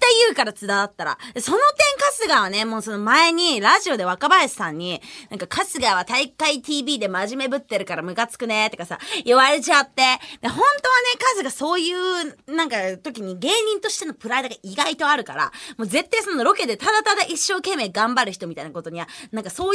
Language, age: Japanese, 20-39